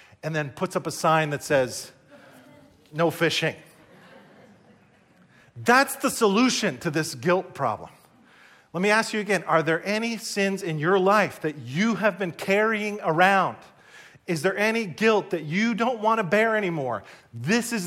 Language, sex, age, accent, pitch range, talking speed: English, male, 40-59, American, 155-215 Hz, 160 wpm